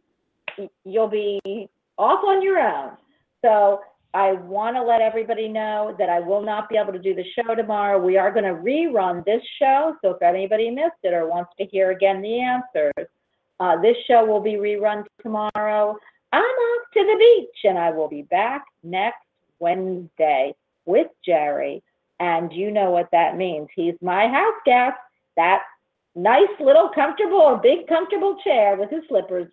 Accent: American